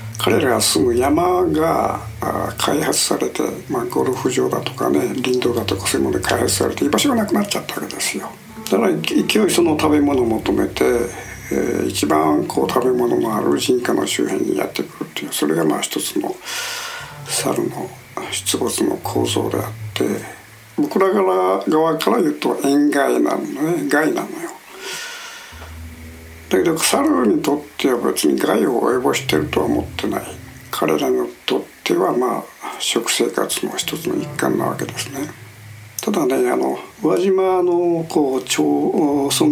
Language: Japanese